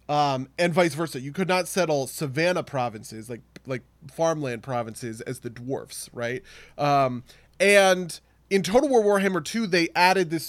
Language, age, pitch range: English, 20-39, 130-175 Hz